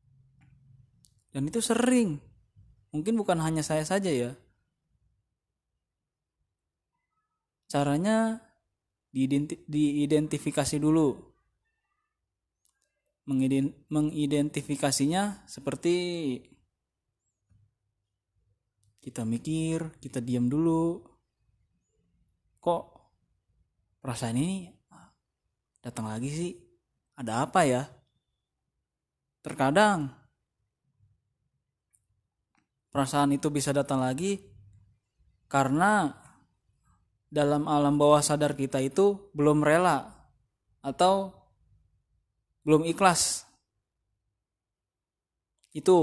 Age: 20-39